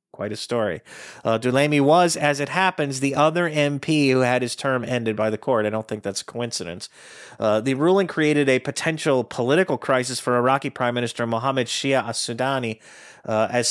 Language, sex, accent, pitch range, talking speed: English, male, American, 110-140 Hz, 185 wpm